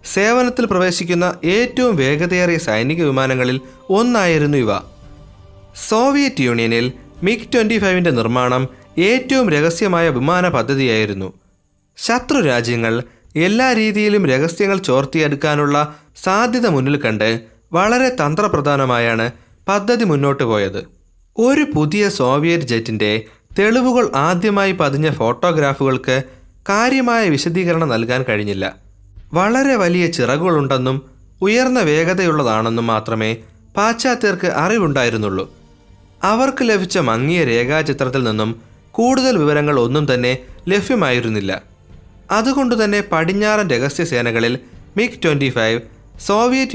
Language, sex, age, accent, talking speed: Malayalam, male, 30-49, native, 85 wpm